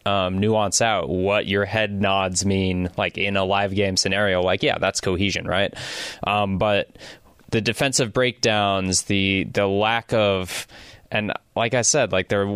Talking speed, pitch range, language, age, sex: 165 wpm, 95-110 Hz, English, 20-39, male